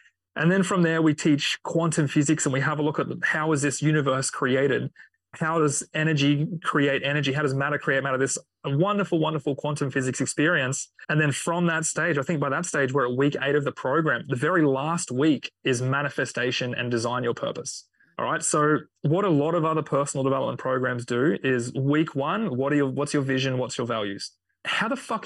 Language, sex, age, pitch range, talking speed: English, male, 30-49, 135-165 Hz, 210 wpm